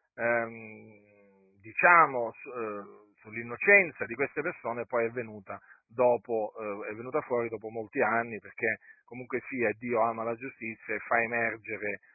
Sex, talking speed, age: male, 150 wpm, 40-59